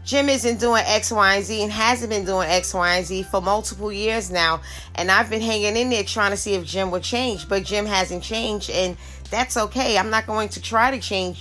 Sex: female